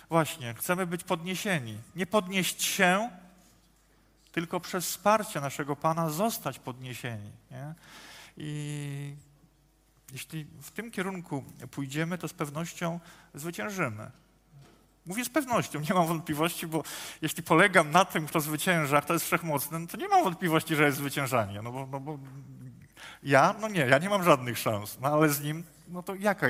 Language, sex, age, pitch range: Polish, male, 40-59, 135-170 Hz